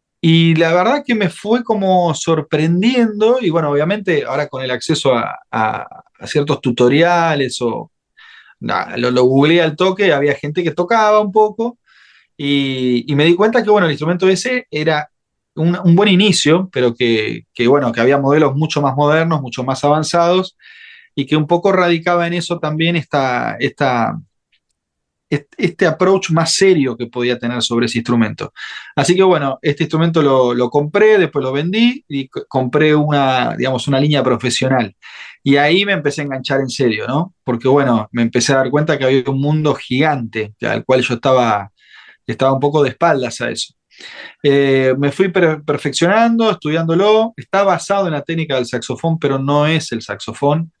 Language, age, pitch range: Spanish, 30-49, 135-175 Hz